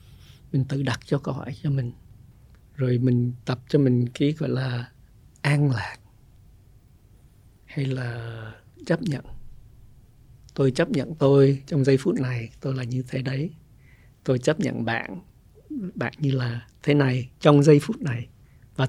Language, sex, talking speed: Vietnamese, male, 155 wpm